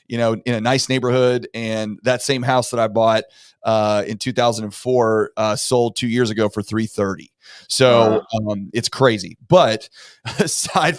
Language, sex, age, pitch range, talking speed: English, male, 30-49, 110-125 Hz, 160 wpm